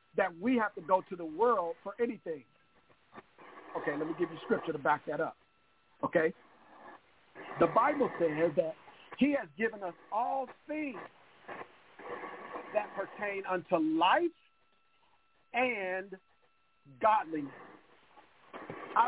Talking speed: 120 wpm